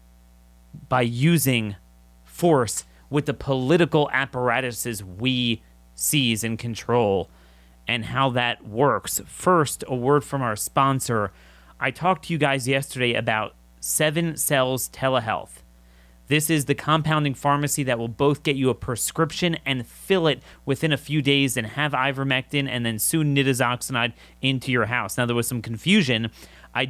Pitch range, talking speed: 115-160 Hz, 145 wpm